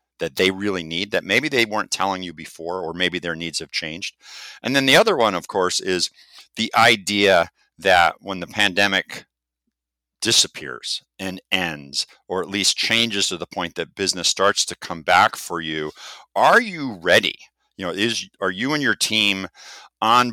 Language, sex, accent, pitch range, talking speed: English, male, American, 85-100 Hz, 180 wpm